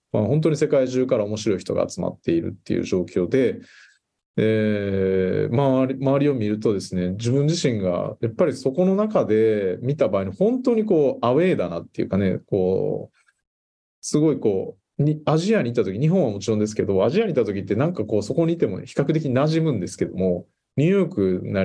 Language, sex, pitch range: Japanese, male, 105-150 Hz